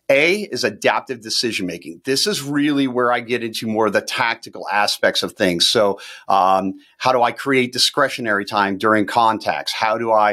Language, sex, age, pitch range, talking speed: English, male, 40-59, 105-130 Hz, 180 wpm